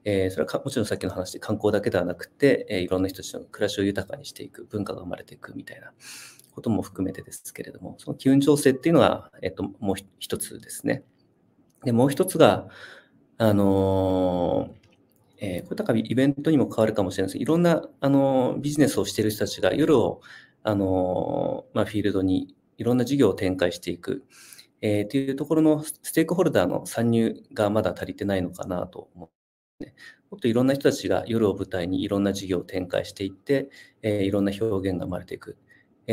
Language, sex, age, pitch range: Japanese, male, 40-59, 95-130 Hz